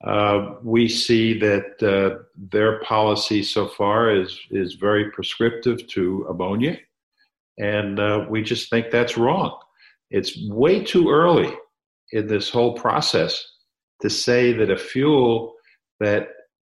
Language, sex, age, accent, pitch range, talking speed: English, male, 50-69, American, 105-120 Hz, 130 wpm